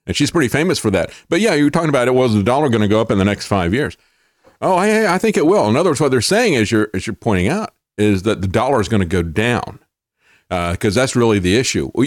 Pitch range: 95-120 Hz